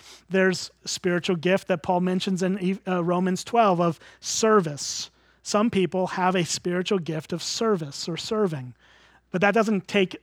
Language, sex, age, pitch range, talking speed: English, male, 30-49, 170-205 Hz, 155 wpm